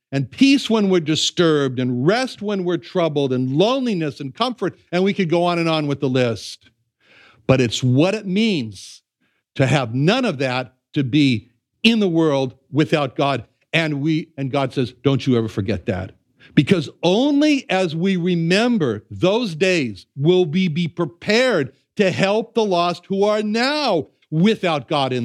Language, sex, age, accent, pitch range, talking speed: English, male, 60-79, American, 135-195 Hz, 170 wpm